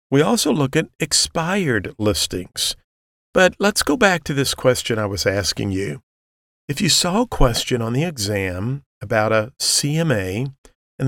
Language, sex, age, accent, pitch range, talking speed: English, male, 50-69, American, 100-135 Hz, 155 wpm